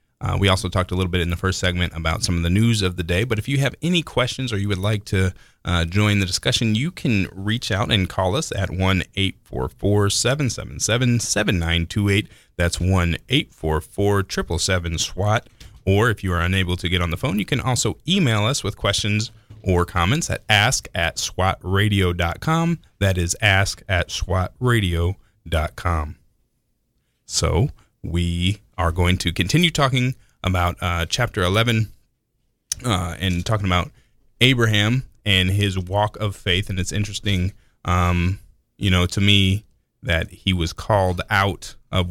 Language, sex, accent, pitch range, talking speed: English, male, American, 90-105 Hz, 160 wpm